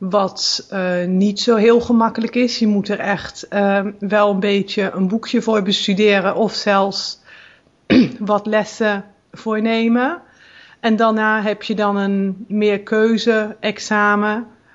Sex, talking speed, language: female, 130 wpm, Dutch